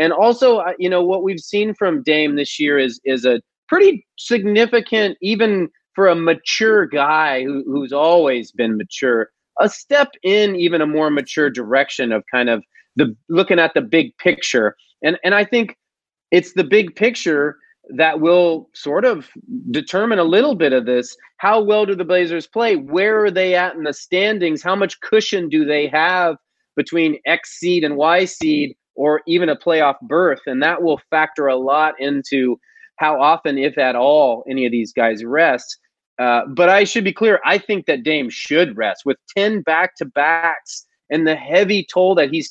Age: 30-49